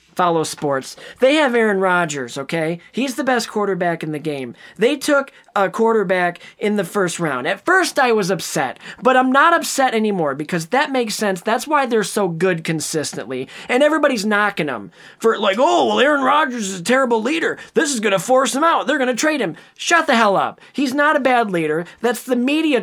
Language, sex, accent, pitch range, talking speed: English, male, American, 180-255 Hz, 205 wpm